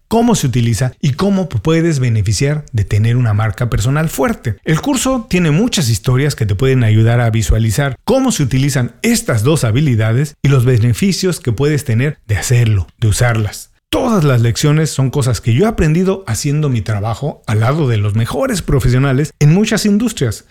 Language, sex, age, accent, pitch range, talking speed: Spanish, male, 40-59, Mexican, 115-160 Hz, 180 wpm